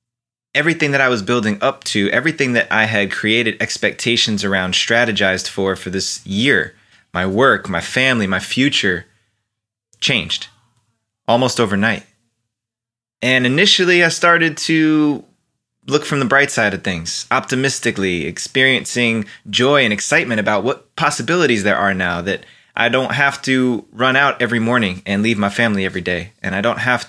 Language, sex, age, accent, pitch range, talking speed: English, male, 20-39, American, 100-130 Hz, 155 wpm